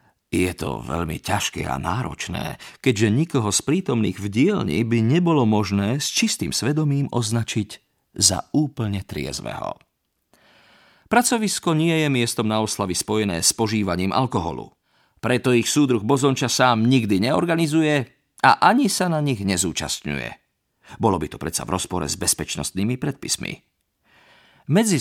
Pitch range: 95-140 Hz